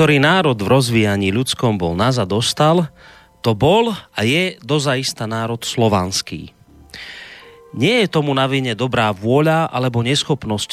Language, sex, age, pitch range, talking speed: Slovak, male, 30-49, 105-140 Hz, 125 wpm